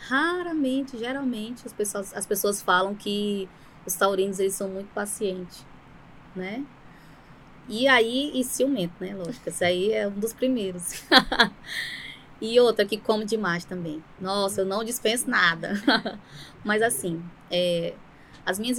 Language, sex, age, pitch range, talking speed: Portuguese, female, 20-39, 195-230 Hz, 135 wpm